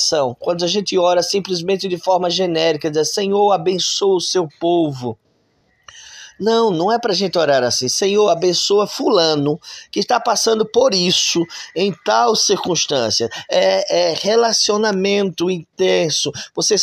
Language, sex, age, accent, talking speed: Portuguese, male, 20-39, Brazilian, 135 wpm